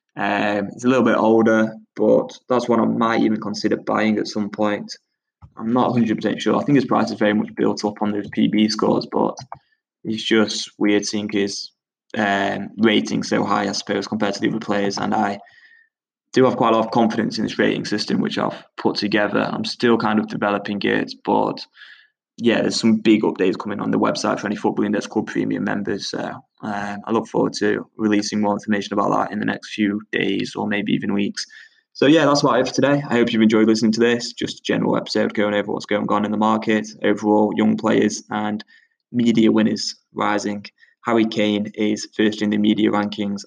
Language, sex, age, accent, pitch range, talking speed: English, male, 10-29, British, 105-115 Hz, 210 wpm